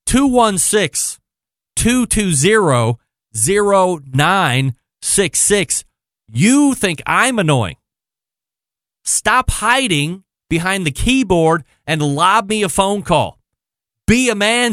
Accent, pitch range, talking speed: American, 150-220 Hz, 85 wpm